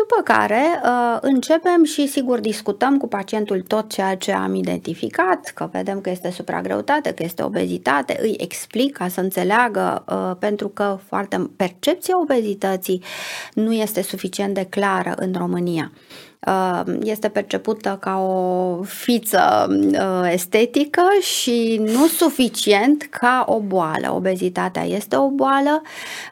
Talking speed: 120 wpm